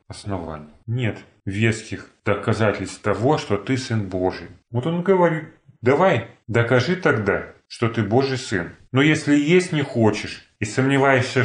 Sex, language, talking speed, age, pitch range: male, Russian, 130 wpm, 30-49, 100-130 Hz